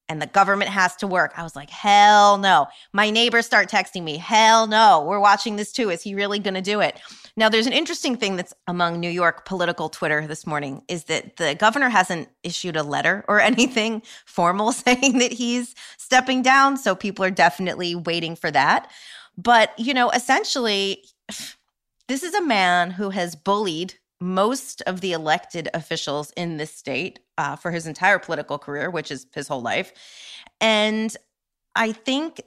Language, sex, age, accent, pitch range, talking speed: English, female, 30-49, American, 165-215 Hz, 180 wpm